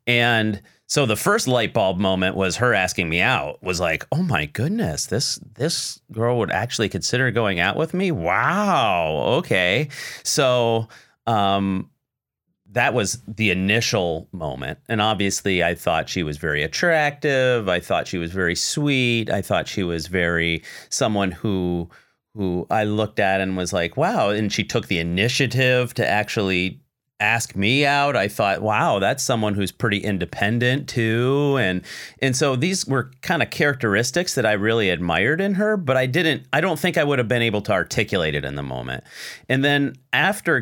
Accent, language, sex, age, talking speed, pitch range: American, English, male, 30-49, 175 wpm, 90-125 Hz